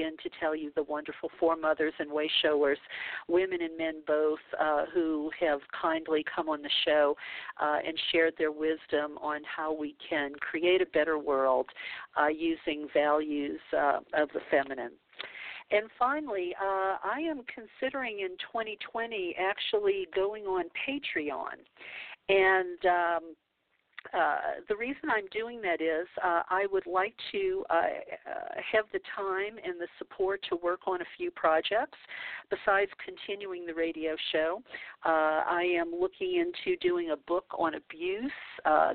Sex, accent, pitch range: female, American, 155-215 Hz